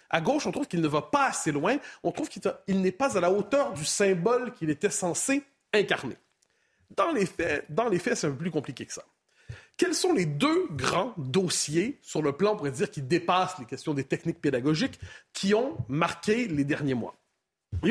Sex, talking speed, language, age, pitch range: male, 210 wpm, French, 40-59, 165-235 Hz